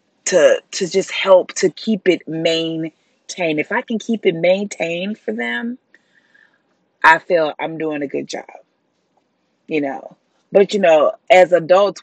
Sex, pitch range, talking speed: female, 150-205 Hz, 150 wpm